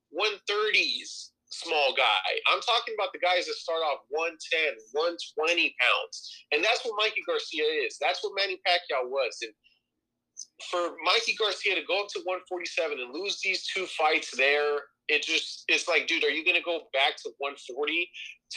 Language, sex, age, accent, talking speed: English, male, 30-49, American, 170 wpm